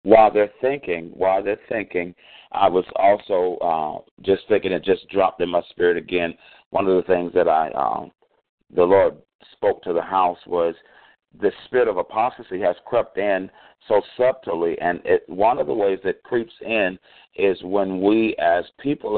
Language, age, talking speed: English, 50-69, 175 wpm